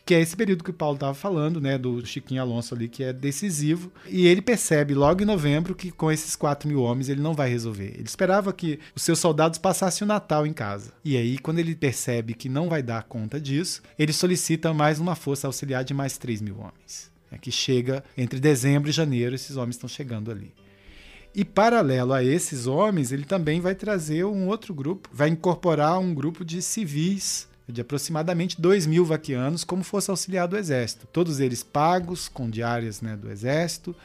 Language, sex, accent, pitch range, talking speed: Portuguese, male, Brazilian, 125-170 Hz, 200 wpm